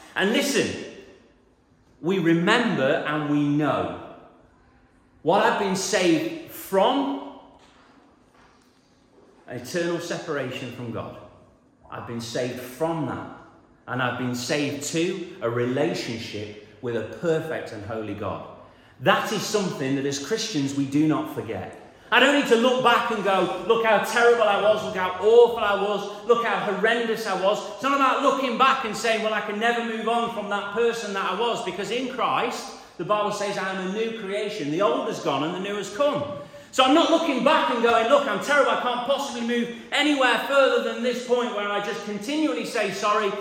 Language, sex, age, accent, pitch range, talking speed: English, male, 40-59, British, 150-235 Hz, 180 wpm